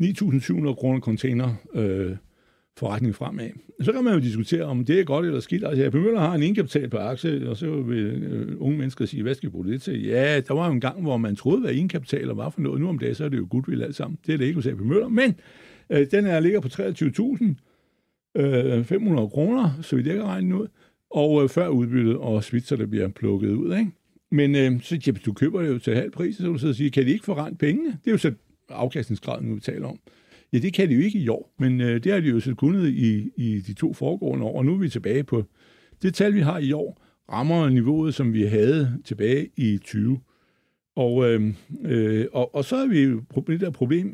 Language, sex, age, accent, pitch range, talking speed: Danish, male, 60-79, native, 120-170 Hz, 240 wpm